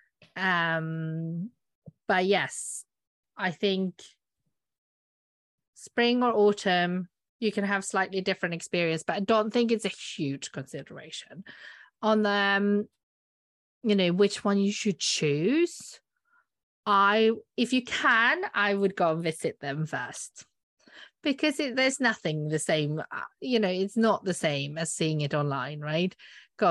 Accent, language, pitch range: British, English, 170-220 Hz